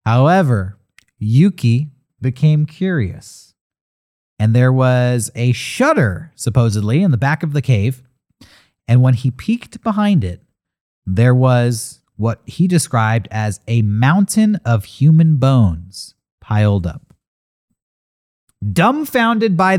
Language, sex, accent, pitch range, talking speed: English, male, American, 105-160 Hz, 110 wpm